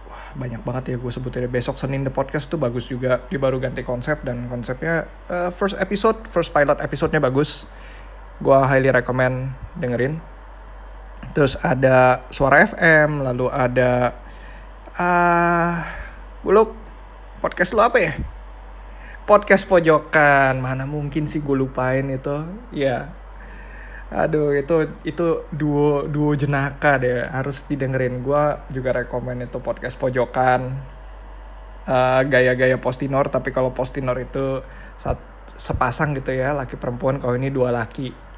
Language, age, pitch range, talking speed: Indonesian, 20-39, 125-155 Hz, 130 wpm